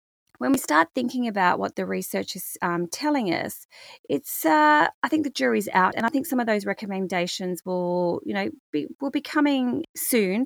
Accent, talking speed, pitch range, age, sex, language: Australian, 195 wpm, 190-265 Hz, 30-49, female, English